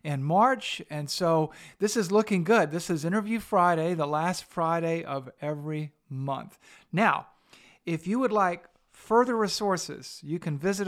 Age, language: 50-69, English